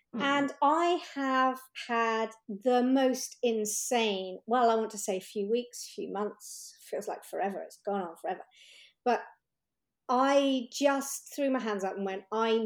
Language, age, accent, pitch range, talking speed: English, 50-69, British, 215-275 Hz, 165 wpm